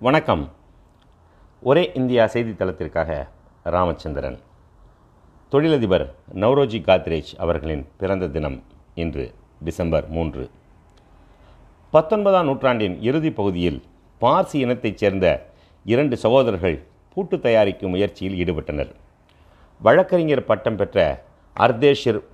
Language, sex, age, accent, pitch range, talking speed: Tamil, male, 50-69, native, 90-130 Hz, 85 wpm